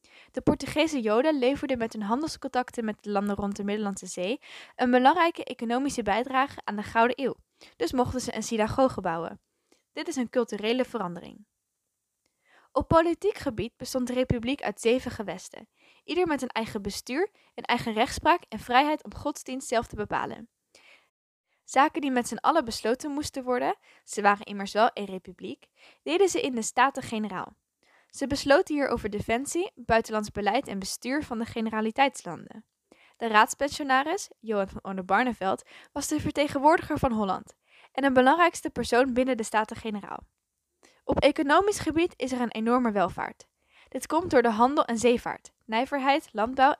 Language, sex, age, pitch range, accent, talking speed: Dutch, female, 10-29, 225-290 Hz, Dutch, 155 wpm